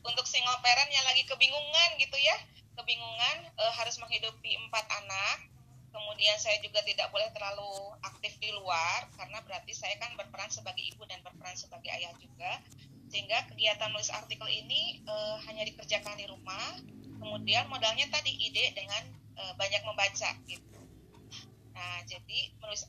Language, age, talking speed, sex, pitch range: Indonesian, 20-39, 150 wpm, female, 175-250 Hz